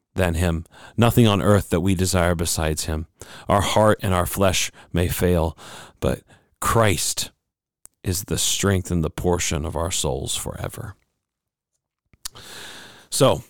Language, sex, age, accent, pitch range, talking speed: English, male, 40-59, American, 95-115 Hz, 135 wpm